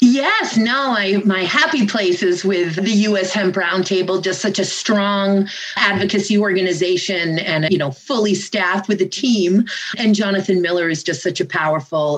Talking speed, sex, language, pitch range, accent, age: 170 wpm, female, English, 180-210 Hz, American, 30-49